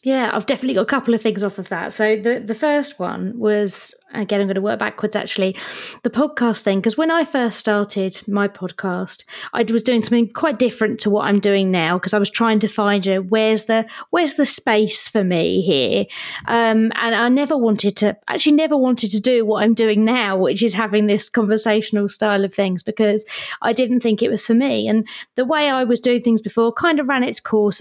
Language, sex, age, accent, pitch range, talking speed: English, female, 20-39, British, 205-235 Hz, 225 wpm